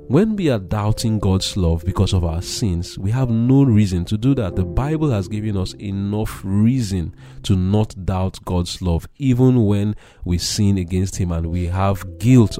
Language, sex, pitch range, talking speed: English, male, 90-125 Hz, 185 wpm